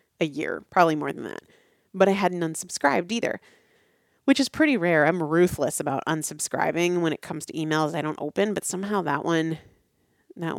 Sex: female